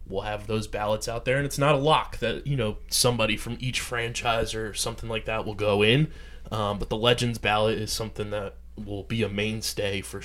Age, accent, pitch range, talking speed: 20-39, American, 100-120 Hz, 225 wpm